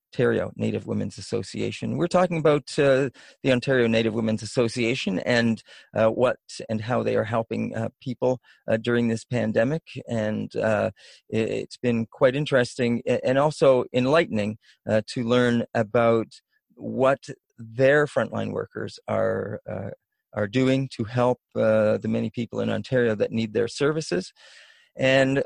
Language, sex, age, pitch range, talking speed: English, male, 40-59, 115-145 Hz, 145 wpm